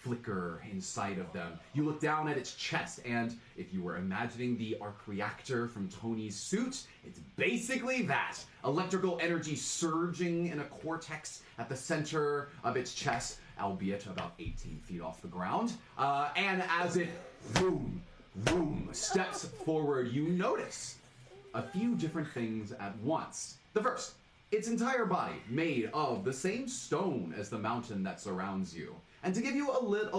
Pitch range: 120-190 Hz